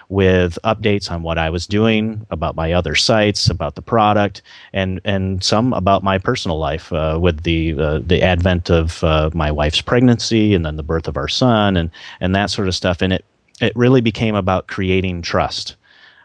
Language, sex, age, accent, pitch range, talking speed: English, male, 30-49, American, 90-100 Hz, 200 wpm